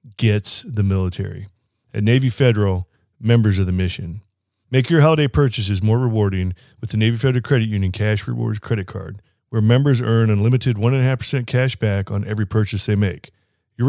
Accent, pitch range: American, 100-125 Hz